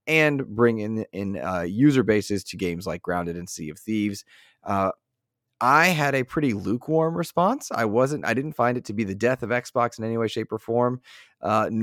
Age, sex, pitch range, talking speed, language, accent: 20-39, male, 100-125 Hz, 210 wpm, English, American